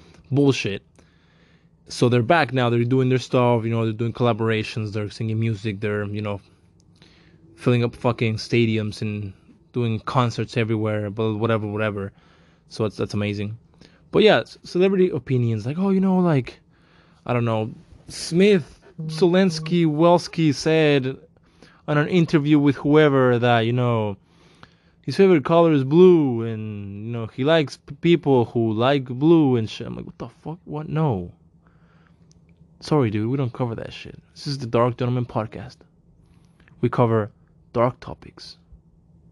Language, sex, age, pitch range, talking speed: English, male, 20-39, 105-150 Hz, 150 wpm